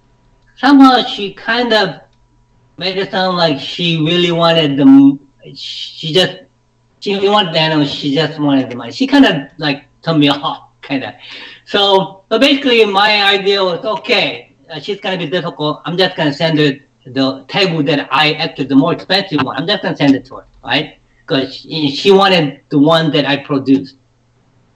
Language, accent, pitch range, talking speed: English, Japanese, 130-175 Hz, 190 wpm